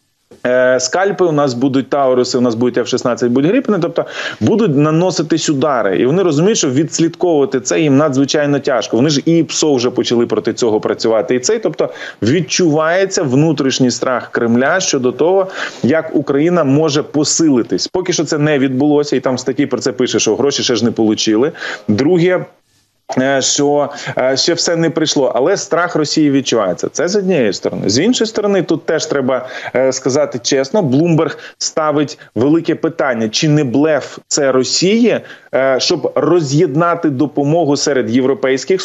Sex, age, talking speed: male, 20-39, 155 wpm